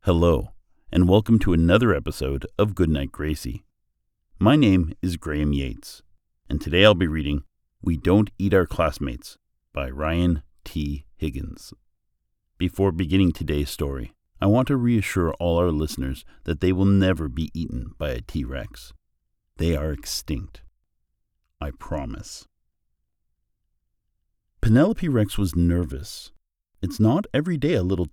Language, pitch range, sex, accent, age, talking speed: English, 75-100 Hz, male, American, 50-69, 135 wpm